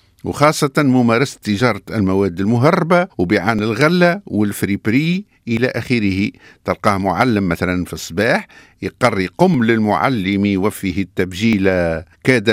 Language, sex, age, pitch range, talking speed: French, male, 50-69, 105-165 Hz, 100 wpm